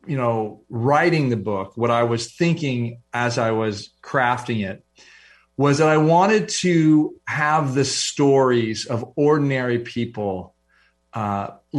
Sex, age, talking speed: male, 40-59, 130 wpm